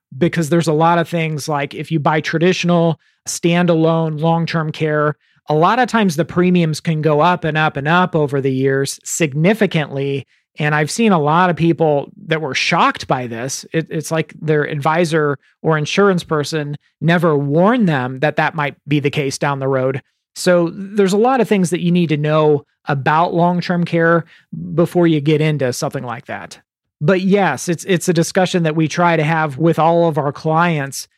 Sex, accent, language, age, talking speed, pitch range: male, American, English, 40-59, 190 wpm, 150-175 Hz